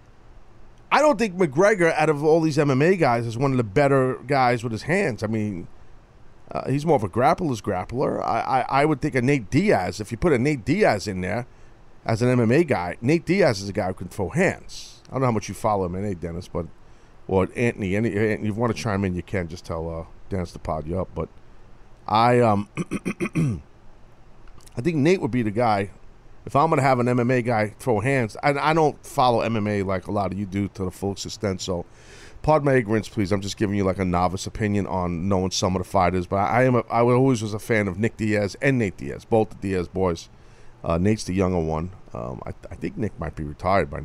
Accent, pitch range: American, 90-125 Hz